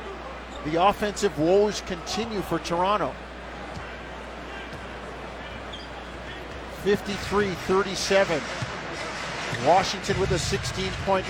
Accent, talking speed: American, 60 wpm